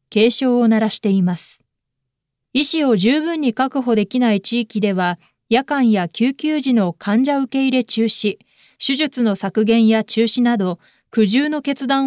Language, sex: Japanese, female